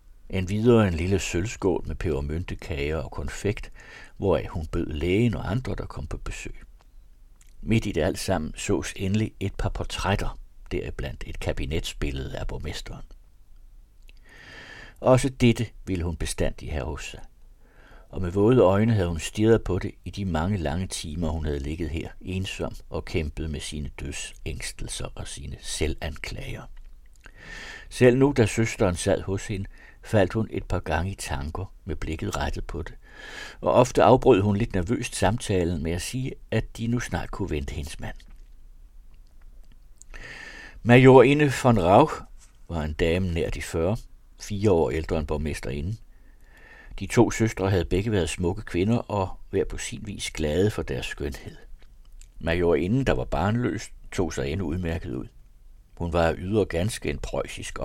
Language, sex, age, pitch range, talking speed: Danish, male, 60-79, 85-105 Hz, 160 wpm